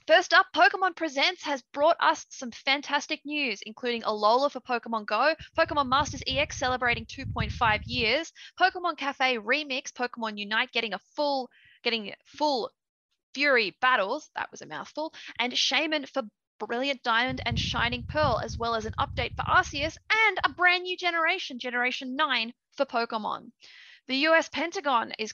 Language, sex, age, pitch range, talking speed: English, female, 20-39, 230-310 Hz, 155 wpm